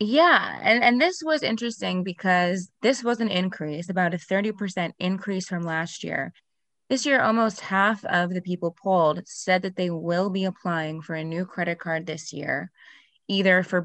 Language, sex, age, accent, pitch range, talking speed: English, female, 20-39, American, 165-205 Hz, 180 wpm